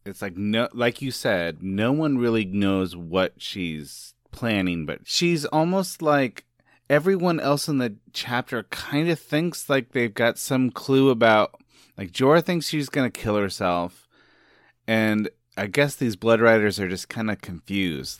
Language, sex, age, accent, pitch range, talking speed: English, male, 30-49, American, 105-145 Hz, 165 wpm